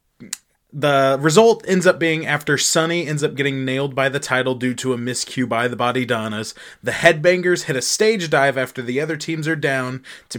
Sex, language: male, English